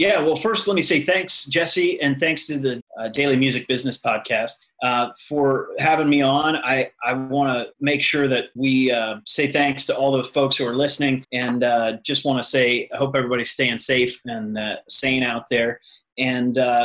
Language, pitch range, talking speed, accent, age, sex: English, 125-145 Hz, 205 wpm, American, 30-49, male